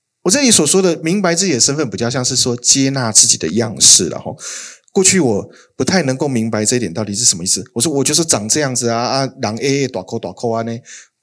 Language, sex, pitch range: Chinese, male, 110-135 Hz